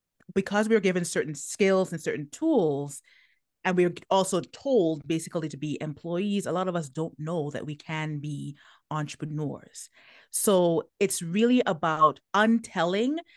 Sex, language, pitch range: female, English, 155-200 Hz